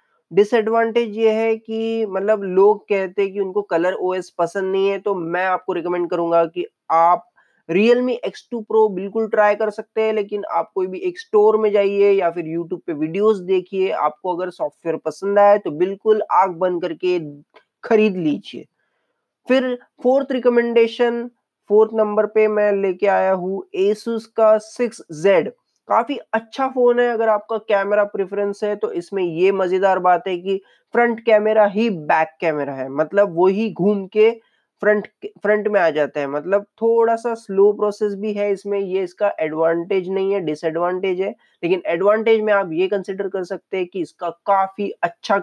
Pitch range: 185-225 Hz